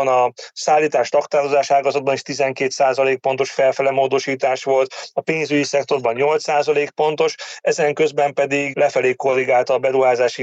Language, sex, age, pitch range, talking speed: Hungarian, male, 30-49, 130-150 Hz, 115 wpm